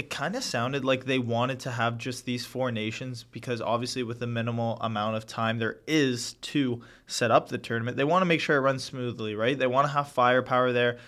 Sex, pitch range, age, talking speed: male, 115-135 Hz, 20-39, 235 wpm